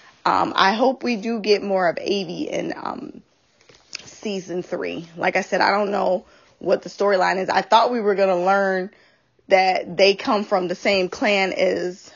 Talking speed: 190 wpm